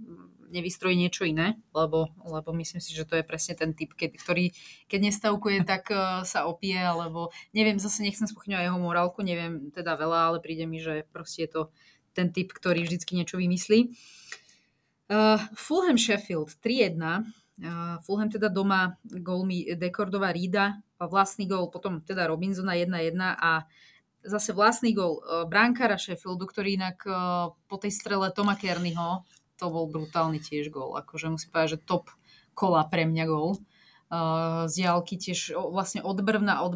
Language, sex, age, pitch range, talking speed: Slovak, female, 20-39, 170-205 Hz, 155 wpm